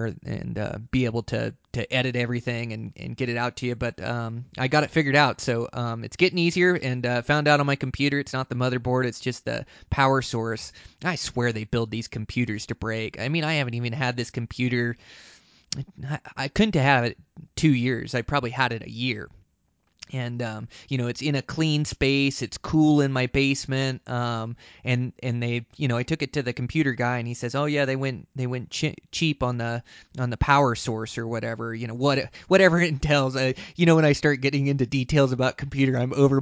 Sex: male